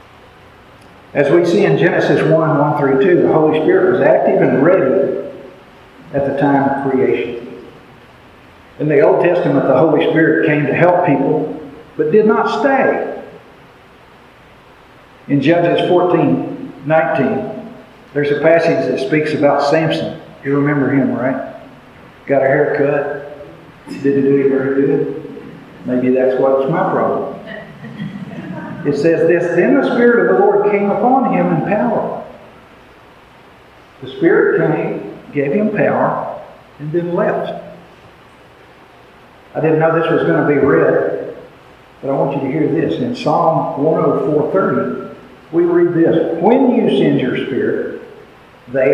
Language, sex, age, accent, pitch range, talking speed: English, male, 50-69, American, 140-215 Hz, 140 wpm